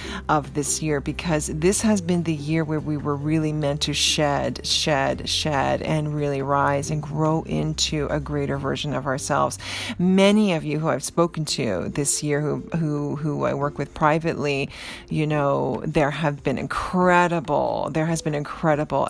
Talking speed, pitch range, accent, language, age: 175 wpm, 145-170 Hz, American, English, 40-59